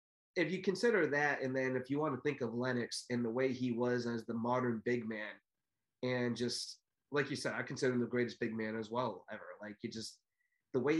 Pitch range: 115-130 Hz